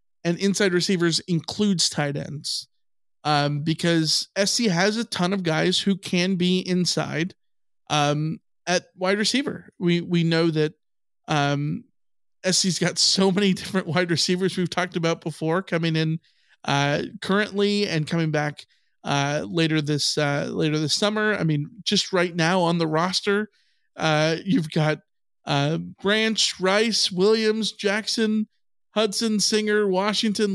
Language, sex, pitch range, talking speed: English, male, 155-195 Hz, 140 wpm